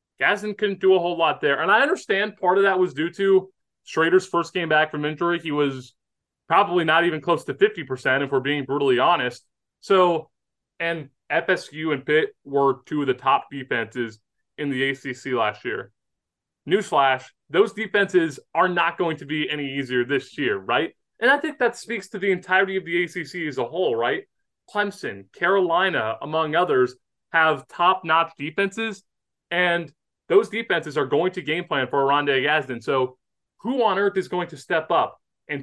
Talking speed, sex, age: 180 wpm, male, 20-39